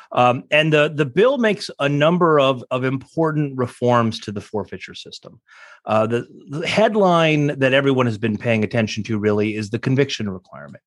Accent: American